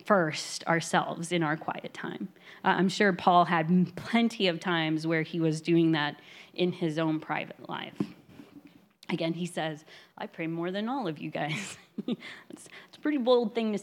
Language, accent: English, American